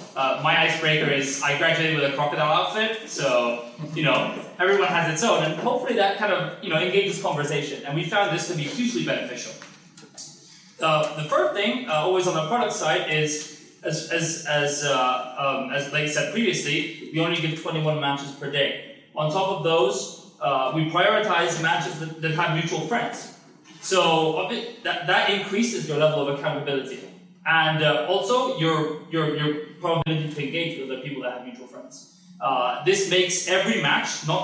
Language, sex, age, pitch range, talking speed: English, male, 20-39, 150-180 Hz, 185 wpm